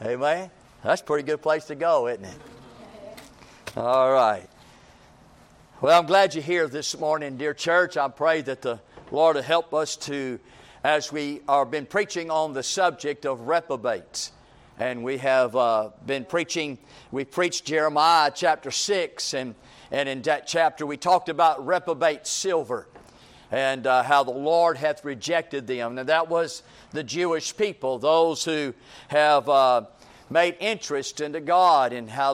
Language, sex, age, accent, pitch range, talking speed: English, male, 50-69, American, 140-170 Hz, 155 wpm